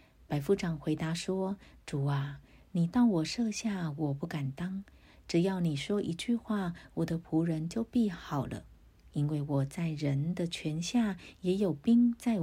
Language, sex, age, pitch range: Chinese, female, 50-69, 145-190 Hz